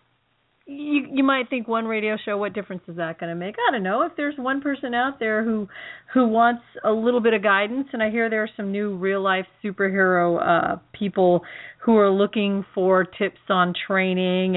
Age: 40-59